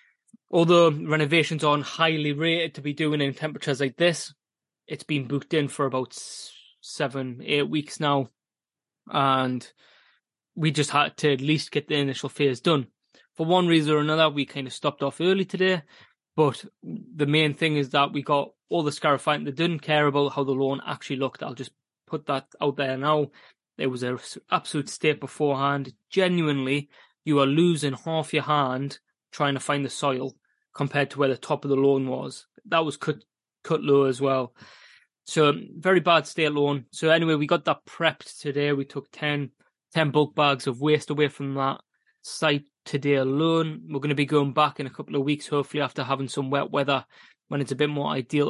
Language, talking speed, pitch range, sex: English, 195 wpm, 140-155 Hz, male